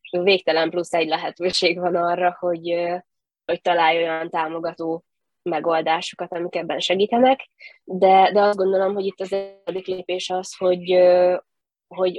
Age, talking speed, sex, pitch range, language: 20-39, 135 wpm, female, 165-190 Hz, Hungarian